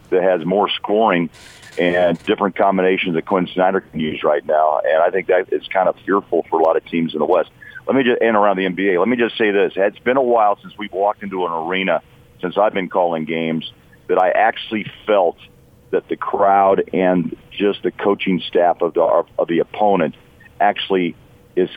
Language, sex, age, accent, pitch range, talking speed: English, male, 40-59, American, 85-105 Hz, 210 wpm